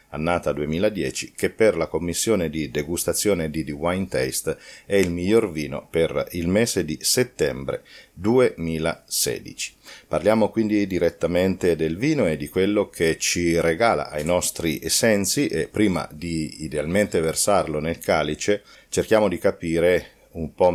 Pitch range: 80-100 Hz